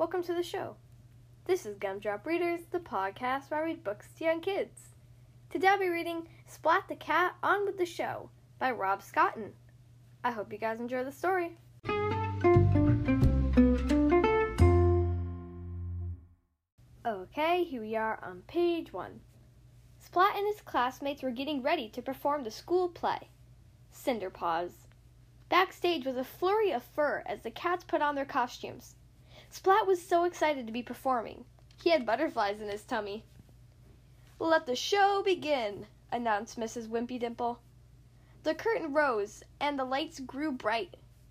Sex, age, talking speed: female, 10-29, 145 wpm